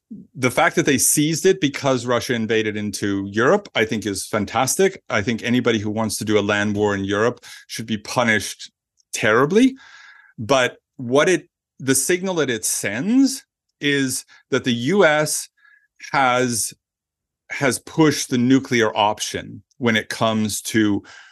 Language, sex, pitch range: English, male, 110-150 Hz